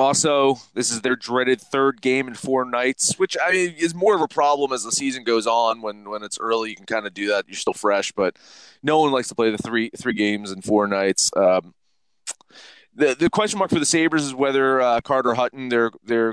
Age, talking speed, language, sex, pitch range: 30-49, 235 wpm, English, male, 100-135 Hz